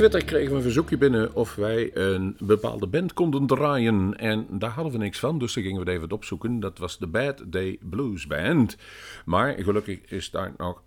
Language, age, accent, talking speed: Dutch, 50-69, Dutch, 210 wpm